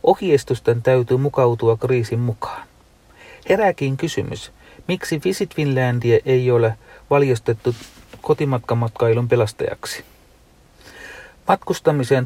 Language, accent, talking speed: Finnish, native, 80 wpm